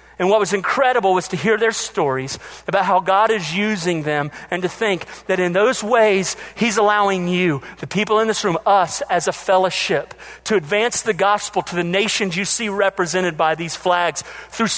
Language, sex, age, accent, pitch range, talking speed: English, male, 40-59, American, 170-215 Hz, 195 wpm